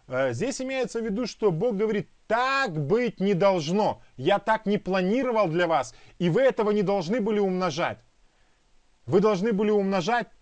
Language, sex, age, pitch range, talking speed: Russian, male, 30-49, 185-245 Hz, 160 wpm